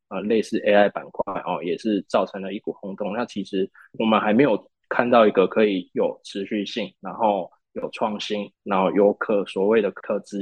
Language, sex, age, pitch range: Chinese, male, 20-39, 100-110 Hz